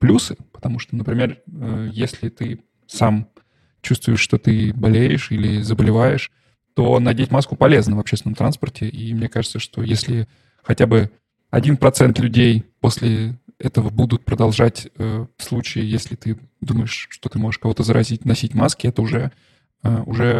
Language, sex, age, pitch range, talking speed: Russian, male, 20-39, 115-130 Hz, 140 wpm